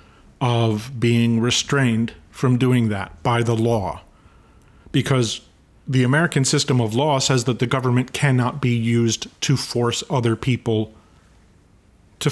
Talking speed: 130 wpm